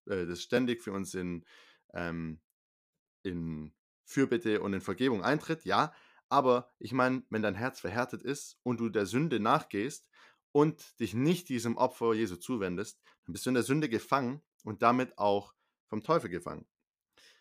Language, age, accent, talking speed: German, 20-39, German, 155 wpm